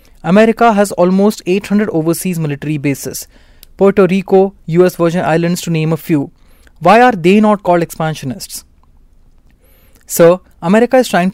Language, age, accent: English, 20-39, Indian